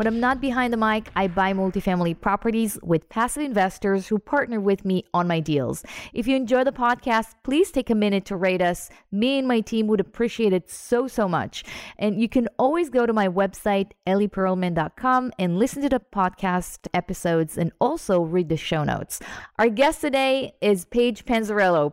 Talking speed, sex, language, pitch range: 190 wpm, female, English, 190-245 Hz